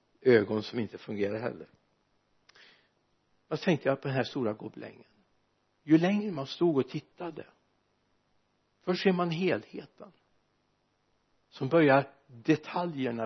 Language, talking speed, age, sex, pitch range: Swedish, 120 wpm, 60-79, male, 130-185 Hz